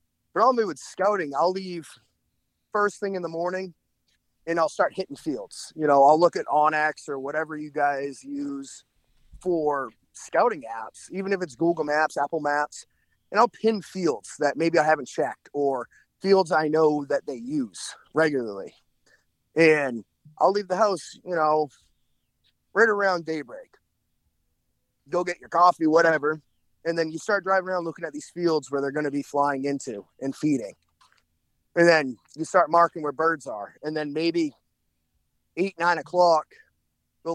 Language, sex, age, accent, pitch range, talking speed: English, male, 30-49, American, 145-175 Hz, 165 wpm